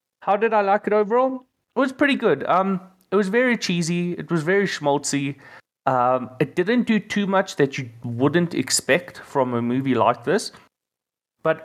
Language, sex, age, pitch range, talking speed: English, male, 30-49, 120-150 Hz, 180 wpm